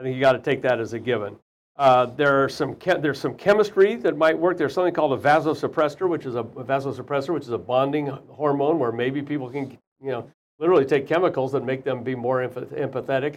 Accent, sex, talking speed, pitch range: American, male, 230 wpm, 130-165 Hz